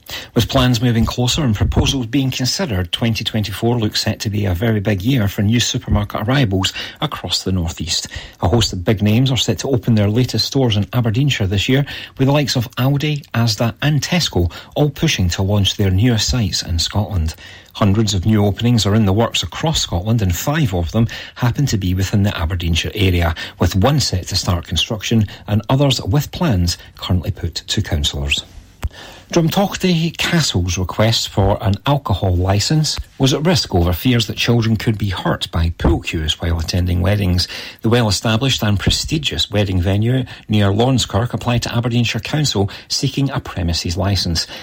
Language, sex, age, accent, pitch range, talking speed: English, male, 40-59, British, 95-125 Hz, 175 wpm